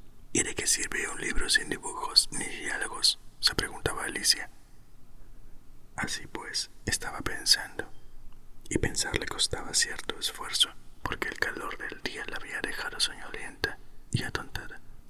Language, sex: Spanish, male